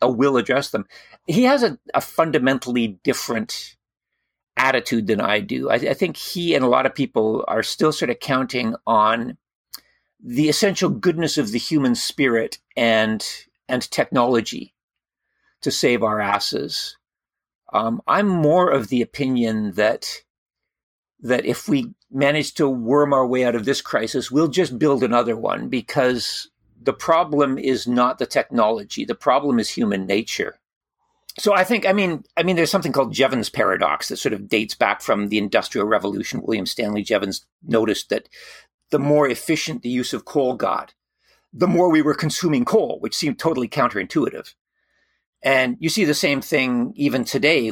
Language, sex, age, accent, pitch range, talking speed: English, male, 50-69, American, 120-160 Hz, 165 wpm